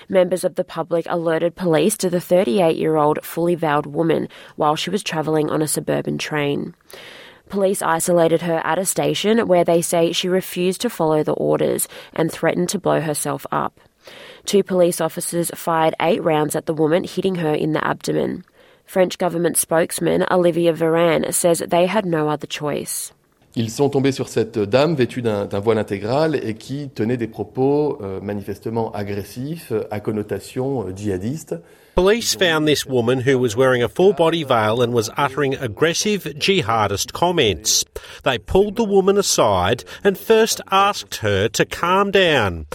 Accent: Australian